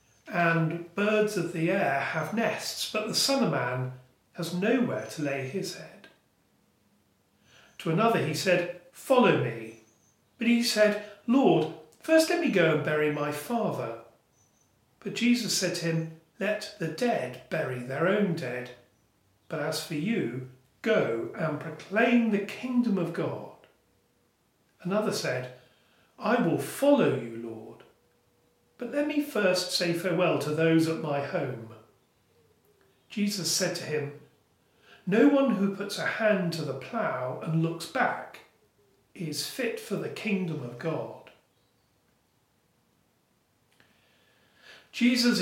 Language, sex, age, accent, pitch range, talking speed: English, male, 40-59, British, 145-210 Hz, 130 wpm